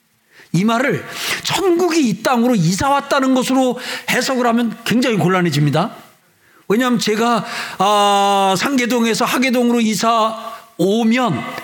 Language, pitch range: Korean, 205-265 Hz